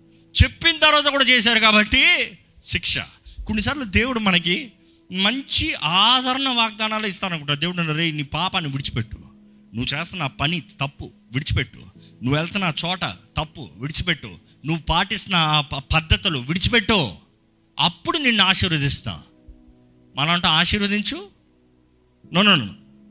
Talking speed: 100 wpm